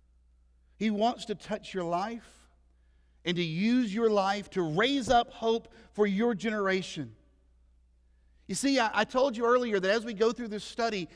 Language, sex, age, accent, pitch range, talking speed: English, male, 50-69, American, 135-220 Hz, 170 wpm